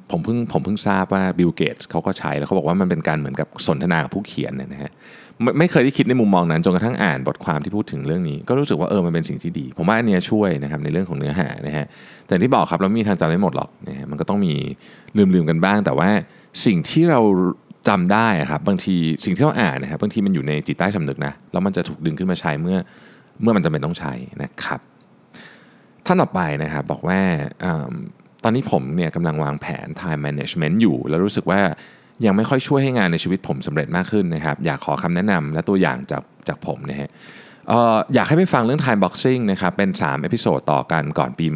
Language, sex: Thai, male